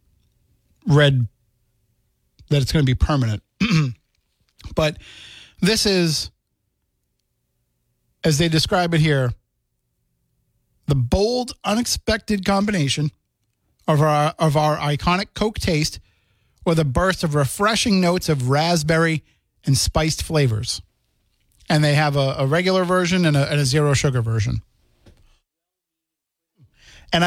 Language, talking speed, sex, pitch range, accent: English, 110 wpm, male, 125-165 Hz, American